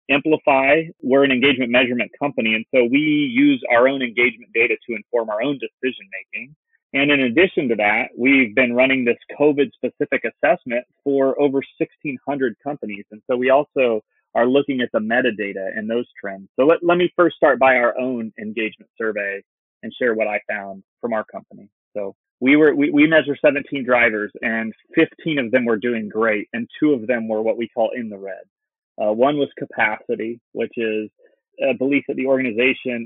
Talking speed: 185 wpm